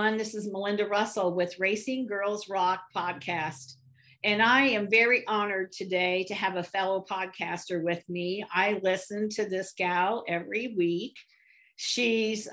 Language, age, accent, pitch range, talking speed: English, 50-69, American, 185-220 Hz, 145 wpm